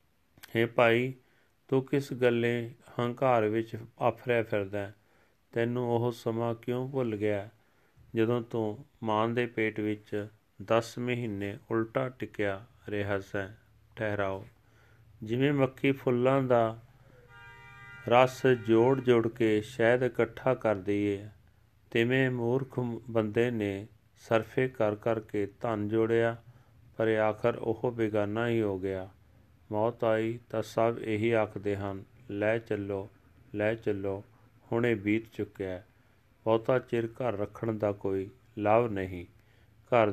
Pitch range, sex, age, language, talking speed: 105-120 Hz, male, 40-59, Punjabi, 115 wpm